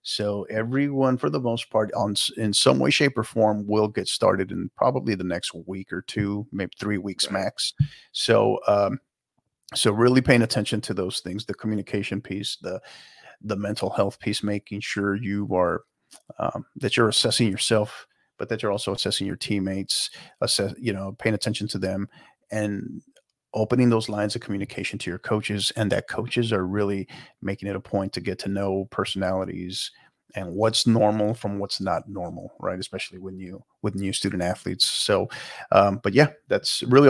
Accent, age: American, 40-59